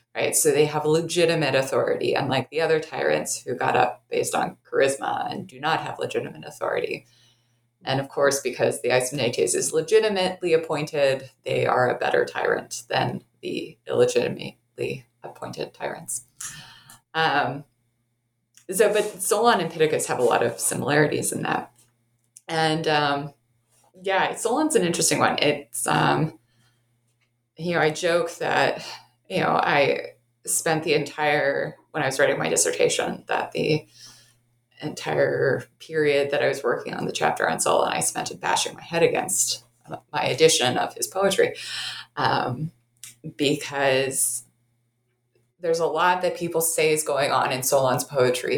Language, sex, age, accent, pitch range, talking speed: English, female, 20-39, American, 125-205 Hz, 145 wpm